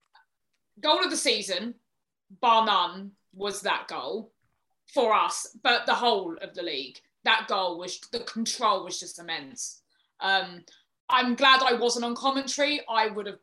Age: 20-39